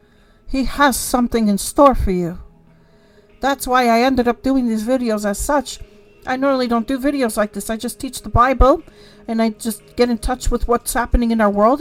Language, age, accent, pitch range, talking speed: English, 50-69, American, 205-245 Hz, 210 wpm